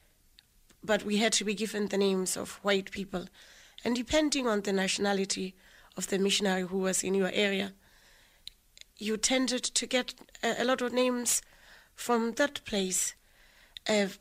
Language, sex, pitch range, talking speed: English, female, 195-240 Hz, 150 wpm